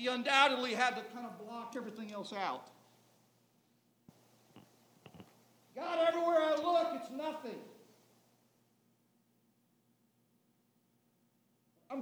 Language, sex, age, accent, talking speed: English, male, 50-69, American, 85 wpm